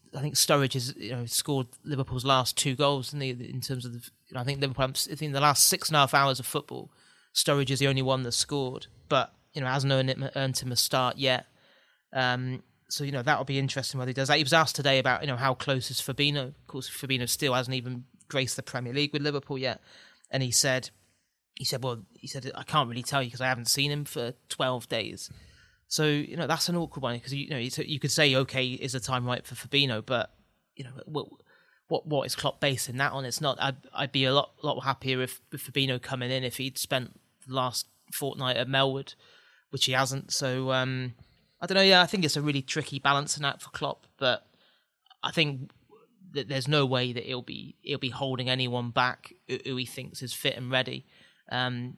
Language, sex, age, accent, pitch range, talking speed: English, male, 30-49, British, 125-140 Hz, 235 wpm